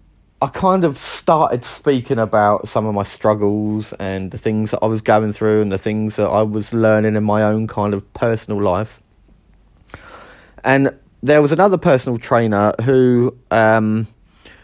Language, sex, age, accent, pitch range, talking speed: English, male, 30-49, British, 110-135 Hz, 165 wpm